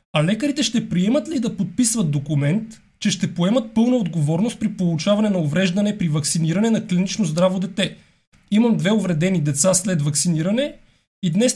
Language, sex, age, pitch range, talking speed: Bulgarian, male, 30-49, 165-205 Hz, 160 wpm